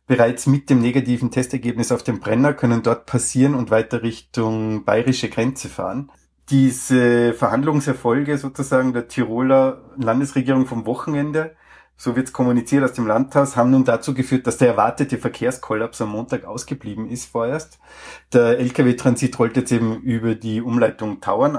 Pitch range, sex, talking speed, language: 115-130 Hz, male, 150 wpm, German